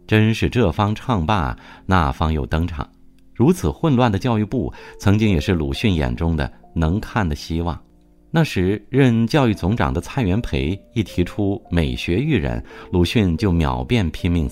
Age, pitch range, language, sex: 50-69, 80-115 Hz, Chinese, male